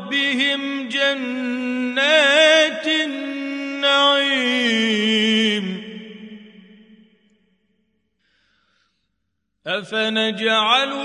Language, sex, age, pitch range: Arabic, male, 40-59, 210-255 Hz